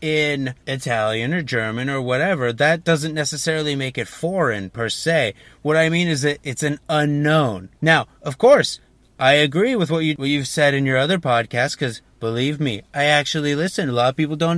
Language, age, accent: English, 30-49, American